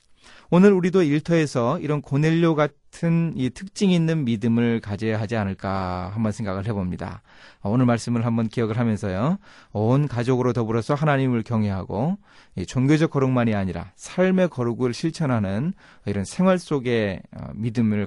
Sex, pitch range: male, 105-150 Hz